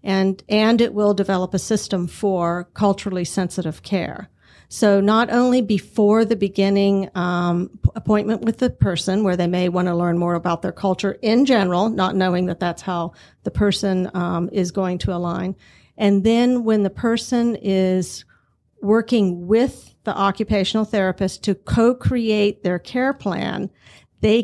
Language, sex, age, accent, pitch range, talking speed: English, female, 50-69, American, 180-210 Hz, 155 wpm